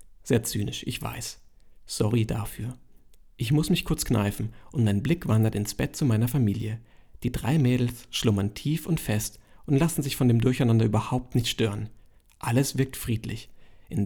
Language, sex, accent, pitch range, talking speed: German, male, German, 110-140 Hz, 170 wpm